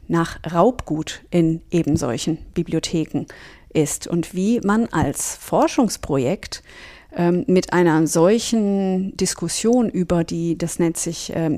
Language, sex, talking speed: German, female, 115 wpm